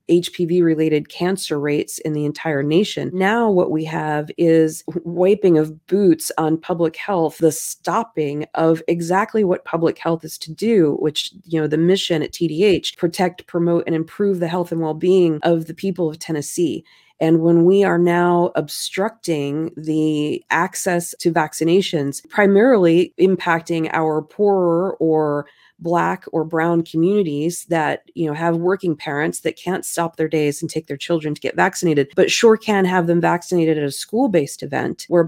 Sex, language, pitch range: female, English, 155-180 Hz